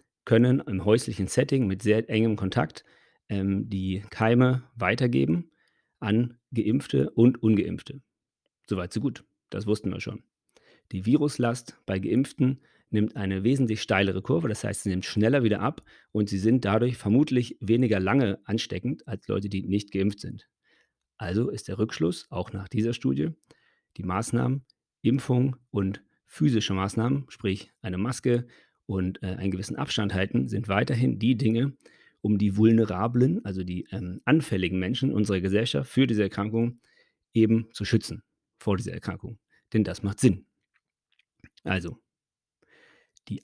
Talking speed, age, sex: 145 wpm, 40-59, male